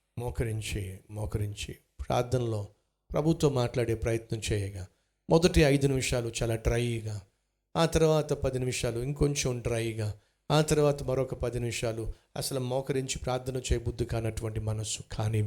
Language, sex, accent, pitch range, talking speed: Telugu, male, native, 105-140 Hz, 115 wpm